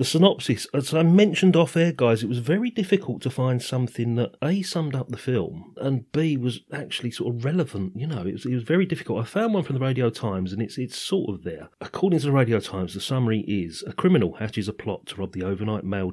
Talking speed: 250 wpm